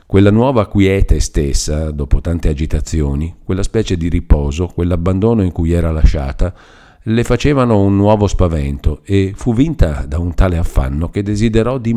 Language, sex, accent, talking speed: Italian, male, native, 155 wpm